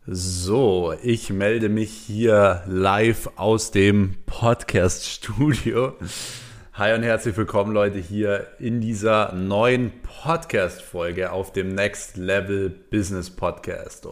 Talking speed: 105 wpm